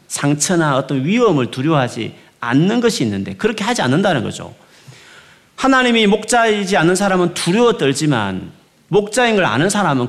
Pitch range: 125-195 Hz